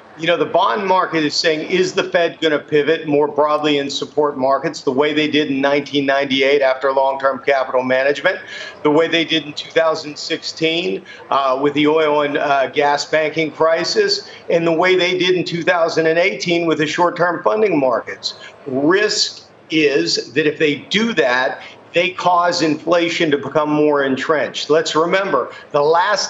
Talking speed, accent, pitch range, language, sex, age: 165 wpm, American, 150-180 Hz, English, male, 50-69